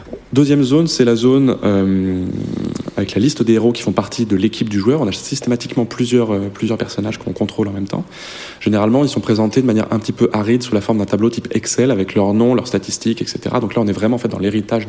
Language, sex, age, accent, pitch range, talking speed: French, male, 20-39, French, 100-120 Hz, 250 wpm